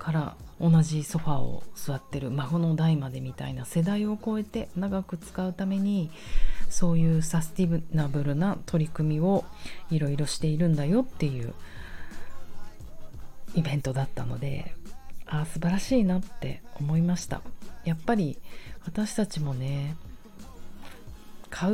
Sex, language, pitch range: female, Japanese, 145-190 Hz